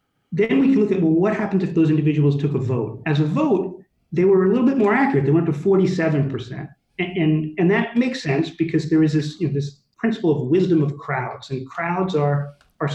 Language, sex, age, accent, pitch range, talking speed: English, male, 40-59, American, 140-190 Hz, 220 wpm